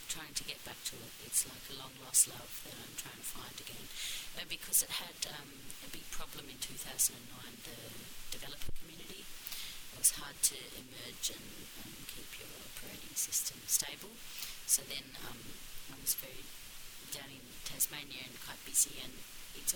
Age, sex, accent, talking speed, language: 40-59, female, Australian, 170 wpm, English